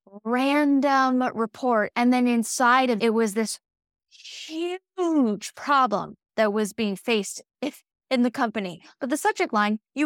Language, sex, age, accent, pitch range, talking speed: English, female, 10-29, American, 215-275 Hz, 145 wpm